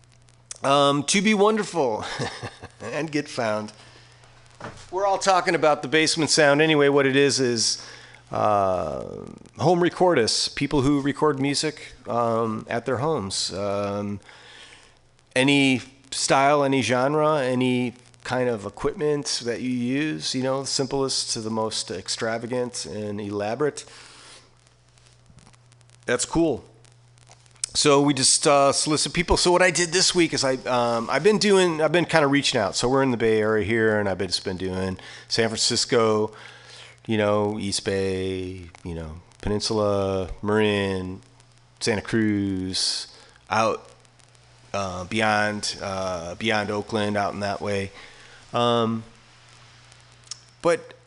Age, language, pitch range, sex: 40-59, English, 105-140 Hz, male